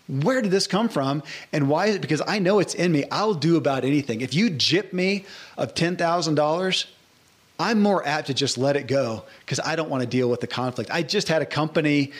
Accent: American